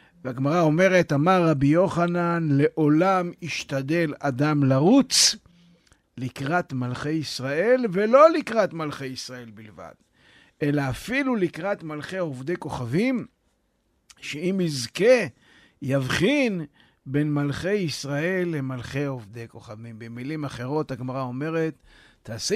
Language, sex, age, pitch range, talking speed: Hebrew, male, 50-69, 130-175 Hz, 100 wpm